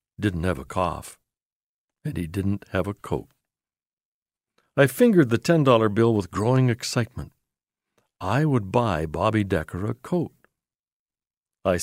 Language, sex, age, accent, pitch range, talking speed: English, male, 60-79, American, 95-135 Hz, 130 wpm